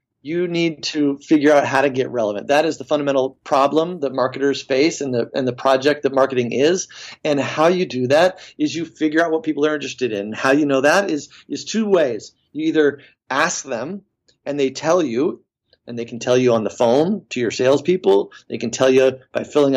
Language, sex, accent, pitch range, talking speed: English, male, American, 135-165 Hz, 215 wpm